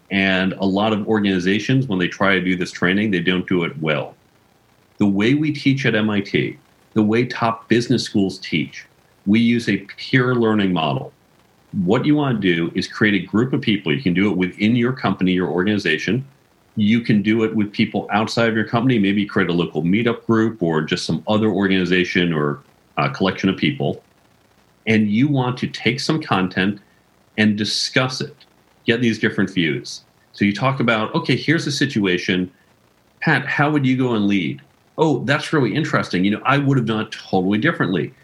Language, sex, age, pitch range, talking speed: English, male, 40-59, 95-125 Hz, 195 wpm